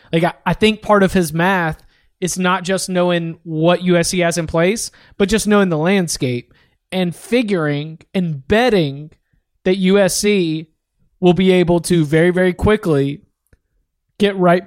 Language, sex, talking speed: English, male, 150 wpm